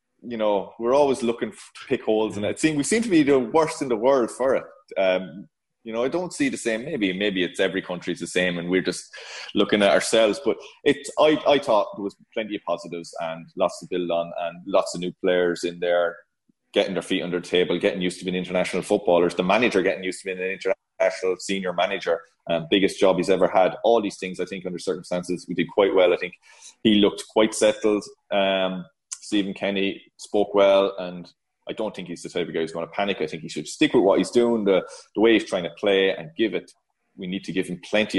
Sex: male